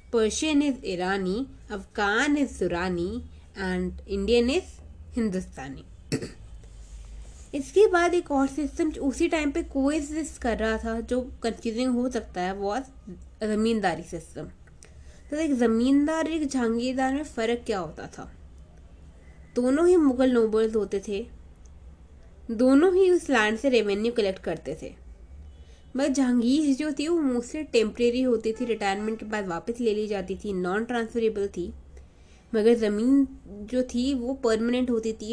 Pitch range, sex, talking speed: 185-260 Hz, female, 145 wpm